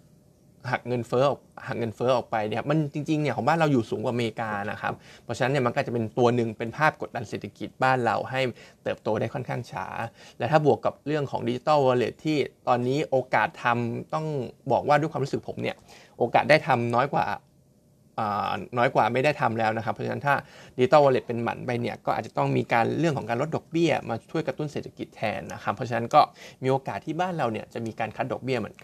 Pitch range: 115-145 Hz